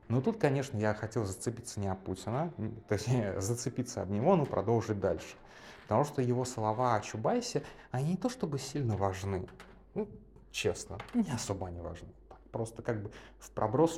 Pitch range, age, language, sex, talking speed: 100-130 Hz, 30-49, Russian, male, 170 wpm